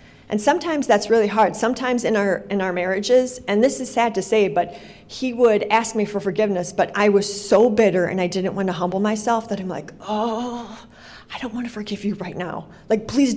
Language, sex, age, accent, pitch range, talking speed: English, female, 40-59, American, 190-225 Hz, 225 wpm